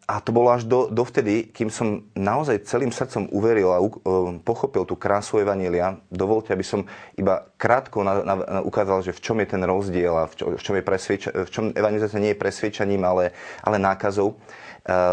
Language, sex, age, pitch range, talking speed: Slovak, male, 30-49, 95-115 Hz, 200 wpm